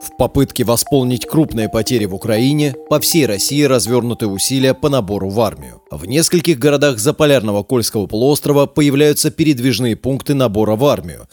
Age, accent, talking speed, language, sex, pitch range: 30-49, native, 155 wpm, Russian, male, 115-145 Hz